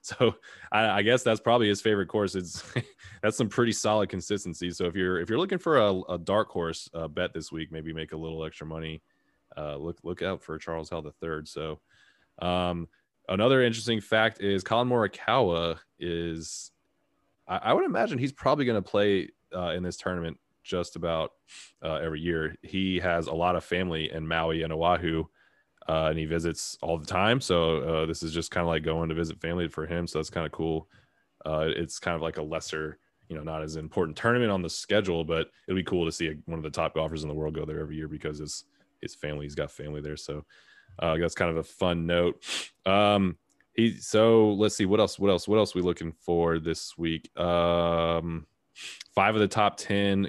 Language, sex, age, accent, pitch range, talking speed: English, male, 20-39, American, 80-95 Hz, 220 wpm